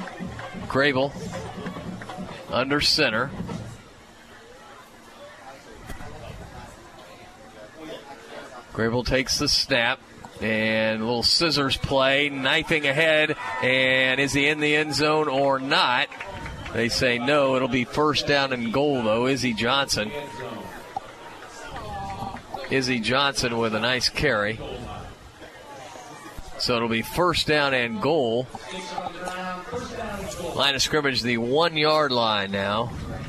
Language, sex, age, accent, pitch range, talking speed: English, male, 40-59, American, 115-140 Hz, 100 wpm